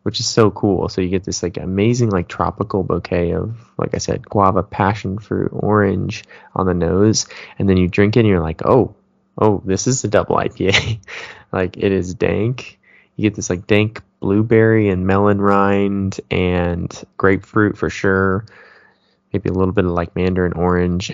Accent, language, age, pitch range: American, English, 20-39, 90-105 Hz